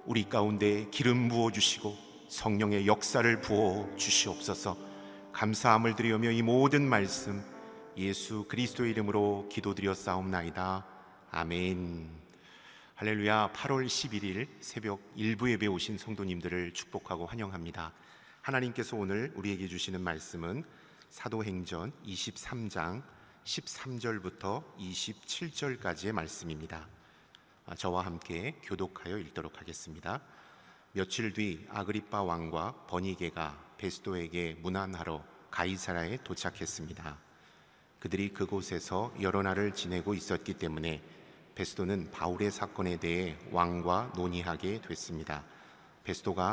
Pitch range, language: 85-105 Hz, Korean